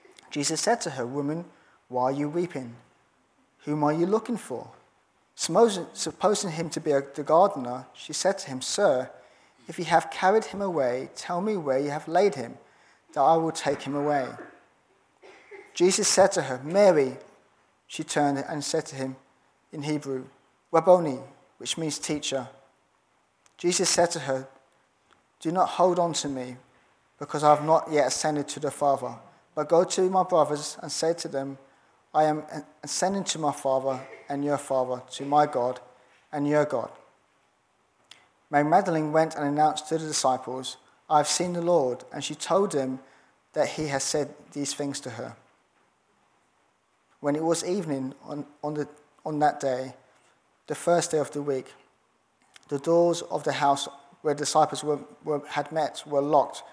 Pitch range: 140-165 Hz